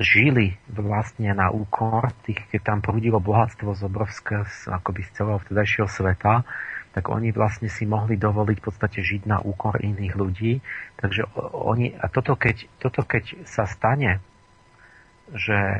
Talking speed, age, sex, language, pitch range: 150 wpm, 40-59, male, Slovak, 100-115 Hz